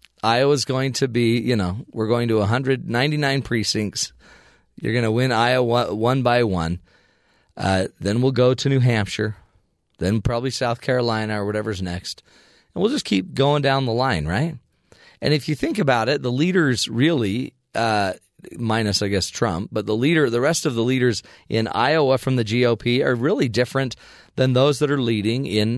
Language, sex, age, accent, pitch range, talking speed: English, male, 40-59, American, 105-135 Hz, 185 wpm